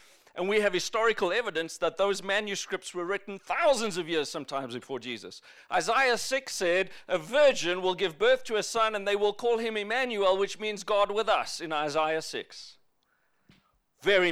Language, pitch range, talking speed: English, 175-240 Hz, 175 wpm